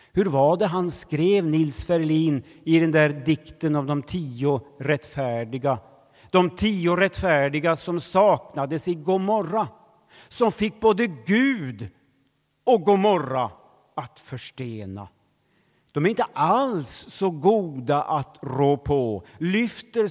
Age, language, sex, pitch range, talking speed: 50-69, Swedish, male, 115-170 Hz, 120 wpm